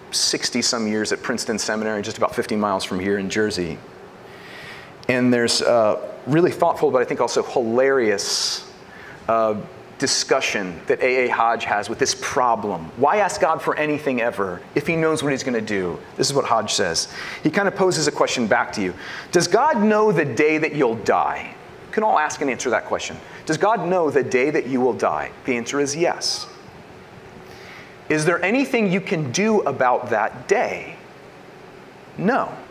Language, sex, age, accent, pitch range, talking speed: English, male, 30-49, American, 125-210 Hz, 185 wpm